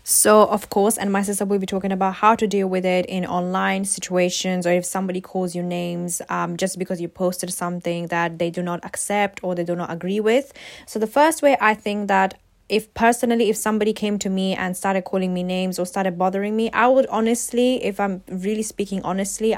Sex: female